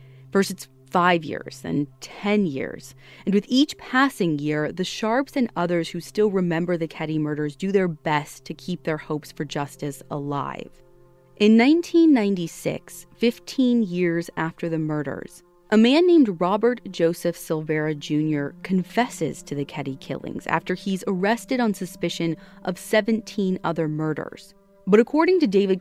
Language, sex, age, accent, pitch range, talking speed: English, female, 30-49, American, 155-205 Hz, 150 wpm